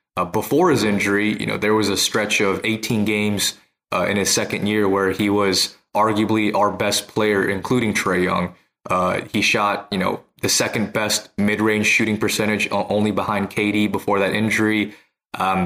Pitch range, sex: 100-115 Hz, male